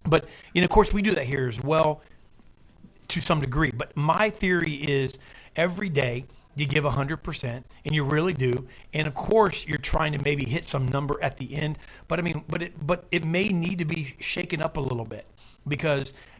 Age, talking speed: 40-59, 215 wpm